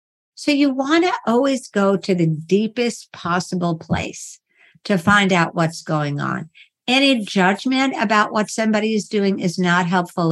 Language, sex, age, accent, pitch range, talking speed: English, female, 50-69, American, 180-220 Hz, 155 wpm